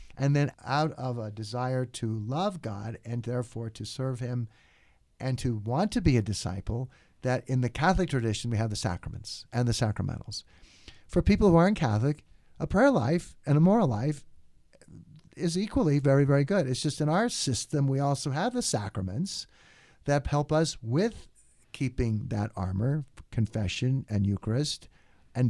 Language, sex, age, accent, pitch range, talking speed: English, male, 50-69, American, 110-145 Hz, 165 wpm